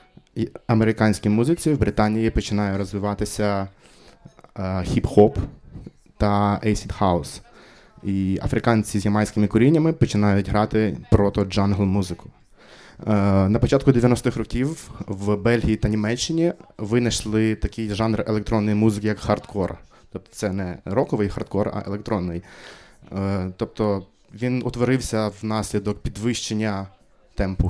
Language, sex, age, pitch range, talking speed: Ukrainian, male, 20-39, 100-115 Hz, 110 wpm